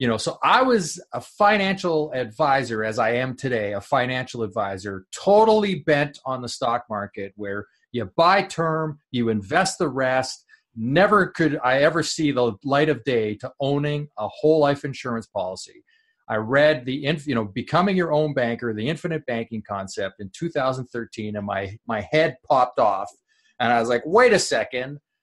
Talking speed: 175 wpm